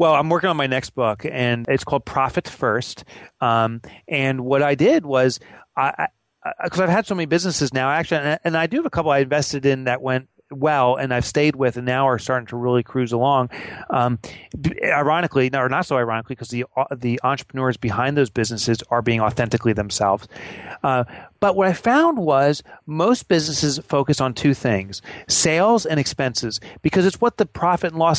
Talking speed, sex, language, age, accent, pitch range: 200 wpm, male, English, 30-49, American, 130-185 Hz